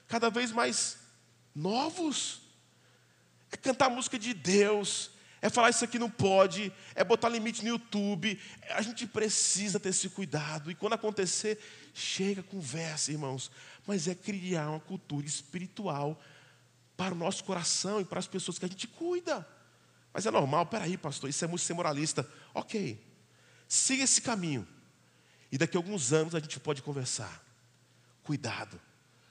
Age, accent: 20-39, Brazilian